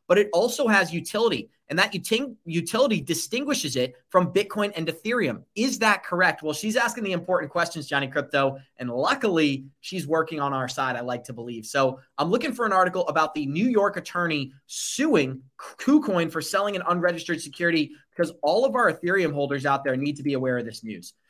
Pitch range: 150-200 Hz